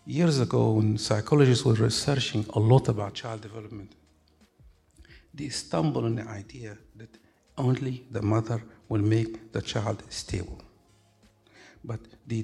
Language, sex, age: Romanian, male, 60-79